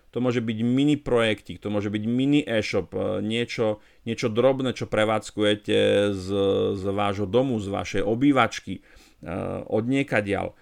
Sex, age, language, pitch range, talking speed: male, 40-59, Slovak, 110-130 Hz, 140 wpm